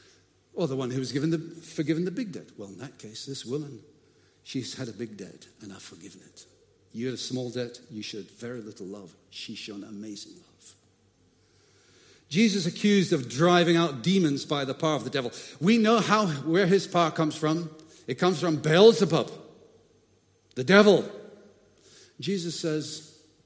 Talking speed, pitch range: 175 wpm, 120-170 Hz